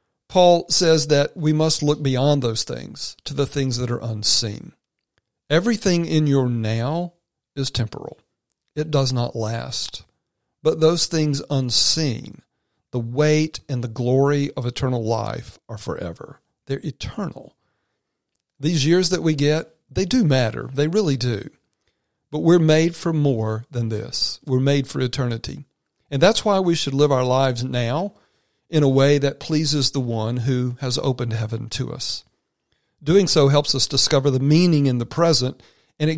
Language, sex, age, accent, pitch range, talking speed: English, male, 40-59, American, 120-155 Hz, 160 wpm